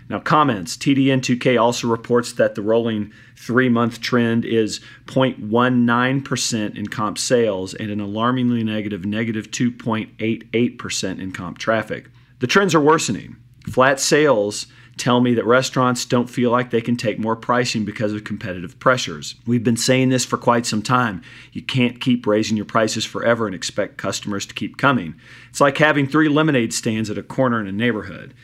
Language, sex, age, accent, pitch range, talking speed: English, male, 40-59, American, 110-130 Hz, 170 wpm